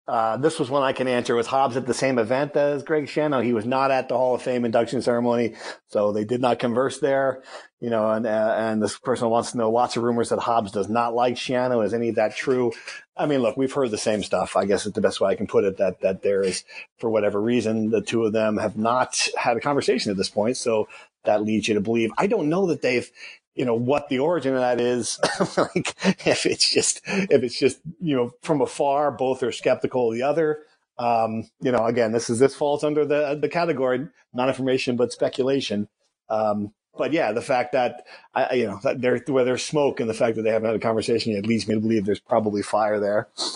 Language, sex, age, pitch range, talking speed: English, male, 40-59, 110-135 Hz, 245 wpm